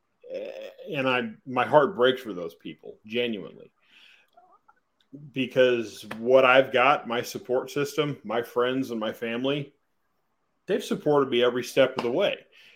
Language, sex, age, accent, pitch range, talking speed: English, male, 30-49, American, 115-150 Hz, 135 wpm